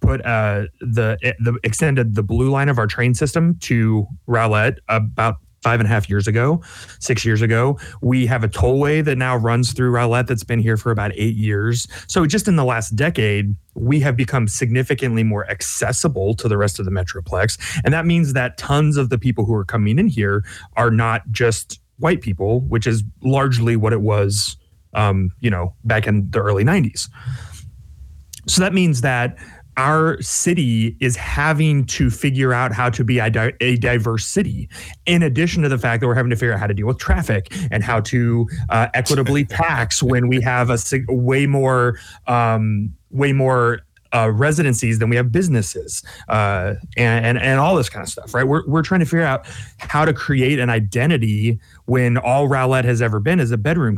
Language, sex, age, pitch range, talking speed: English, male, 30-49, 110-130 Hz, 195 wpm